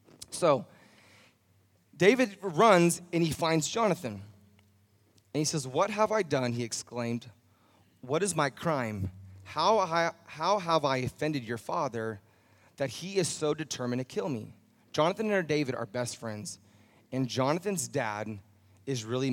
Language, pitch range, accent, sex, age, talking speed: English, 110-160 Hz, American, male, 30-49, 150 wpm